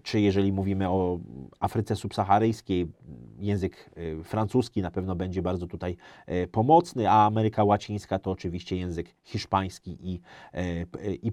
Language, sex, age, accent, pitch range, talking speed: Polish, male, 30-49, native, 100-140 Hz, 115 wpm